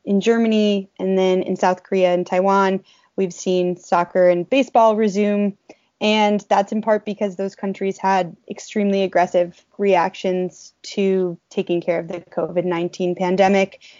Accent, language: American, English